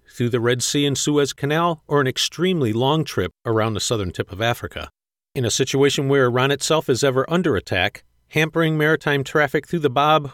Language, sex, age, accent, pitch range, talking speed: English, male, 50-69, American, 120-145 Hz, 195 wpm